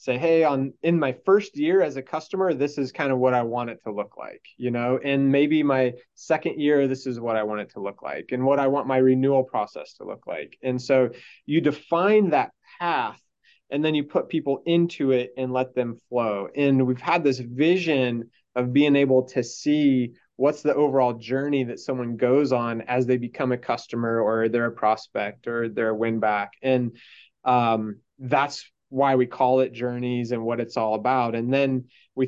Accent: American